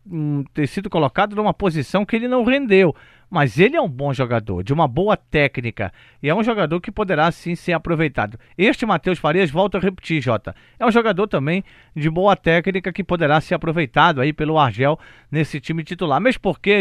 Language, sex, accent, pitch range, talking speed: Portuguese, male, Brazilian, 155-200 Hz, 195 wpm